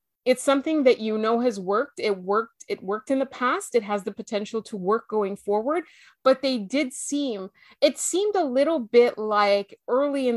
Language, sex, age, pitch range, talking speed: English, female, 30-49, 205-255 Hz, 195 wpm